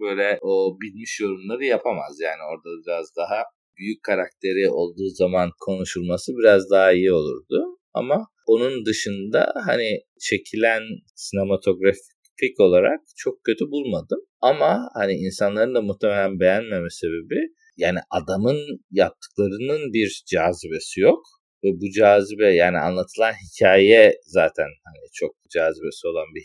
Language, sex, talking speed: Turkish, male, 120 wpm